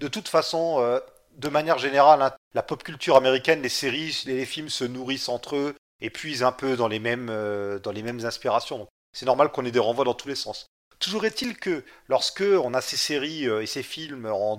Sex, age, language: male, 30-49, French